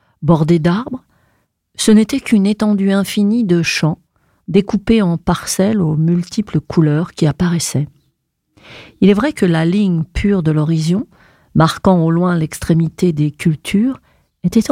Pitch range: 165-210 Hz